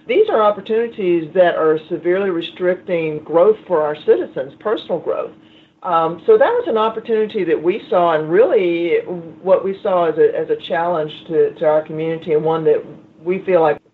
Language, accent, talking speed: English, American, 175 wpm